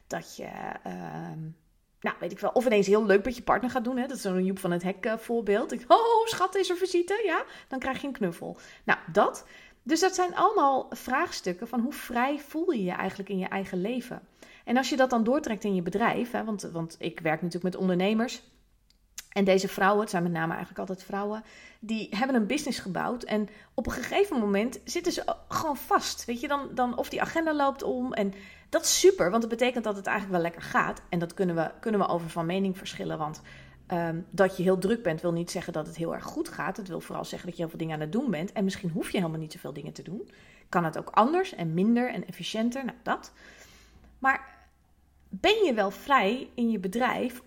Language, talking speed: Dutch, 230 wpm